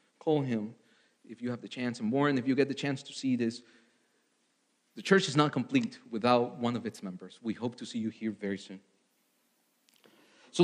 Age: 30-49